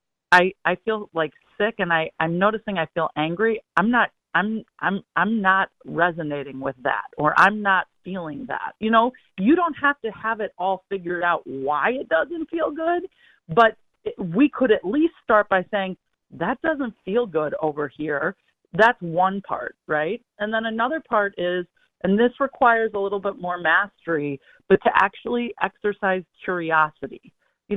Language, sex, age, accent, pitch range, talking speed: English, female, 40-59, American, 170-235 Hz, 175 wpm